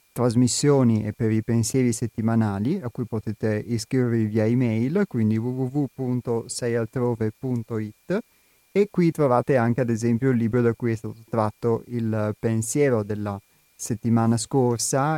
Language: Italian